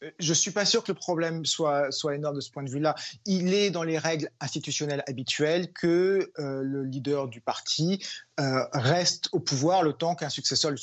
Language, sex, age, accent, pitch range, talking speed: French, male, 30-49, French, 145-180 Hz, 205 wpm